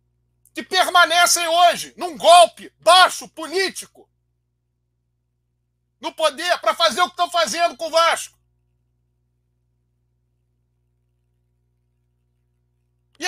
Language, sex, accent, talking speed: Portuguese, male, Brazilian, 85 wpm